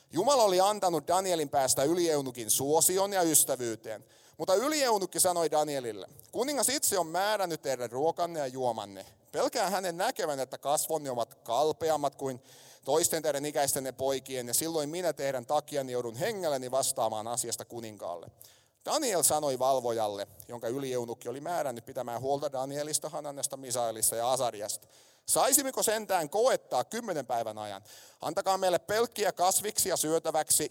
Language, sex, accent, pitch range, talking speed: Finnish, male, native, 125-165 Hz, 135 wpm